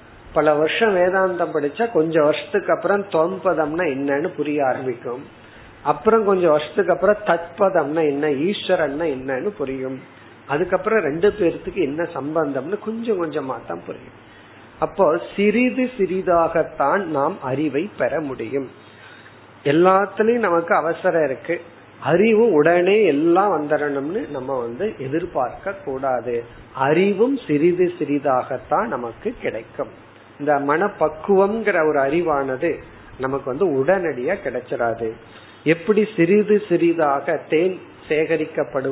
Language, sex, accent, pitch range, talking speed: Tamil, male, native, 135-190 Hz, 80 wpm